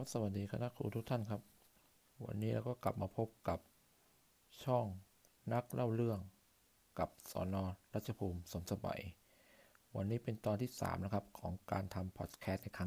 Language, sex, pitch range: Thai, male, 95-115 Hz